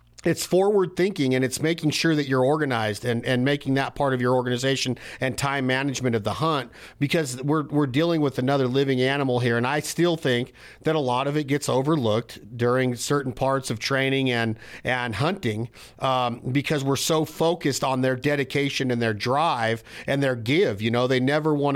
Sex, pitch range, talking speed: male, 125-160 Hz, 195 wpm